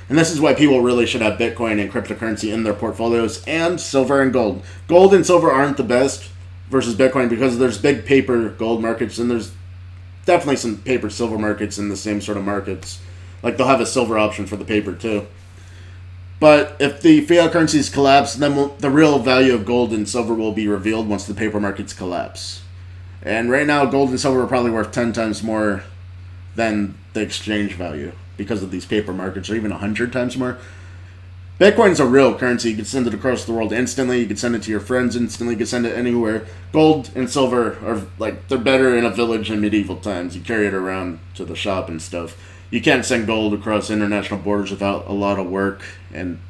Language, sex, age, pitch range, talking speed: English, male, 30-49, 95-125 Hz, 210 wpm